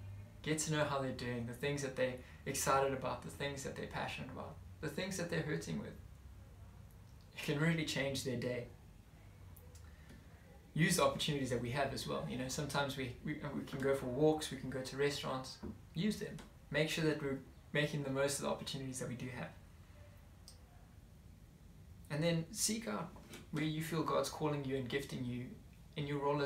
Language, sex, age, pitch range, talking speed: English, male, 20-39, 120-150 Hz, 195 wpm